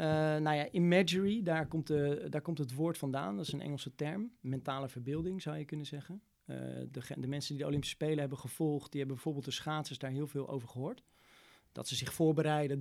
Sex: male